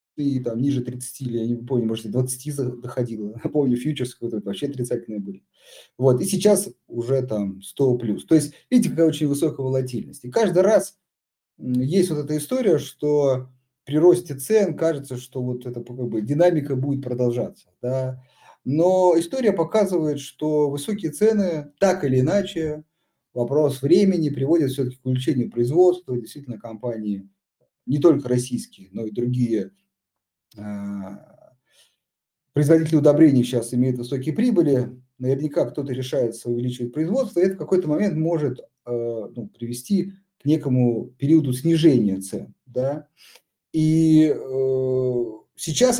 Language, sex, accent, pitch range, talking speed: Russian, male, native, 120-160 Hz, 135 wpm